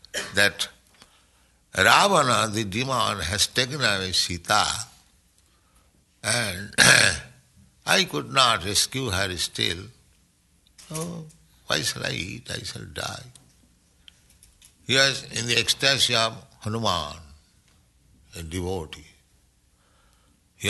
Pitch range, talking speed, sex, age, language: 85-125 Hz, 95 wpm, male, 60-79, English